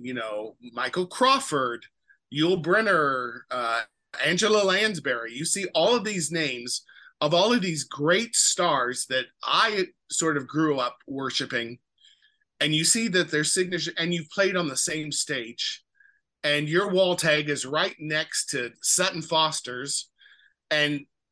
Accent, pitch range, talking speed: American, 140-190 Hz, 145 wpm